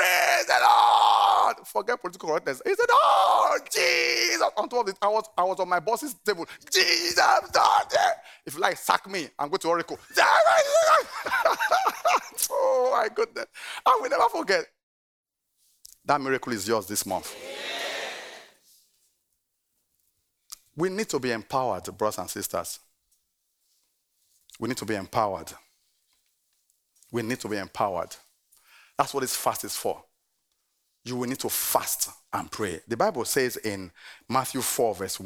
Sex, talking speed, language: male, 140 wpm, English